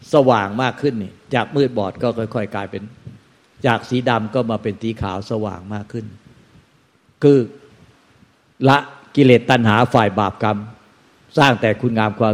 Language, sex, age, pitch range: Thai, male, 60-79, 105-130 Hz